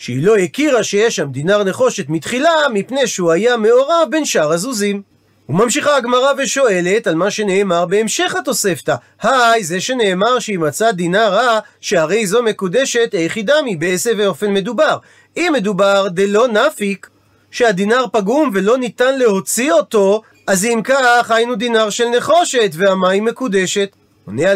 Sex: male